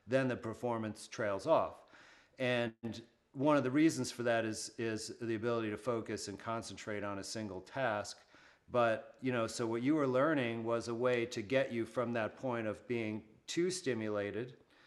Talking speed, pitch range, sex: 180 wpm, 105-120 Hz, male